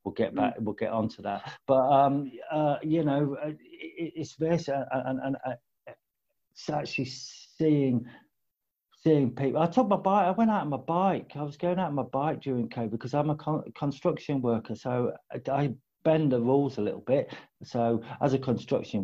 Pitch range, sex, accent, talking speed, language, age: 115-145 Hz, male, British, 190 wpm, English, 50-69